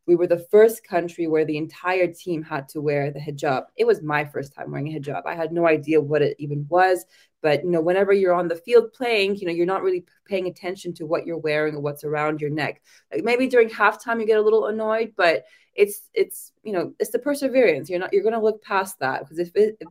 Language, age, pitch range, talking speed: English, 20-39, 160-200 Hz, 245 wpm